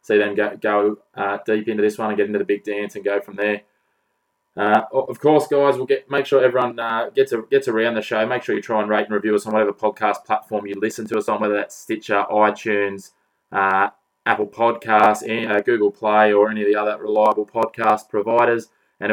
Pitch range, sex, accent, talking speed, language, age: 105-115 Hz, male, Australian, 235 wpm, English, 20-39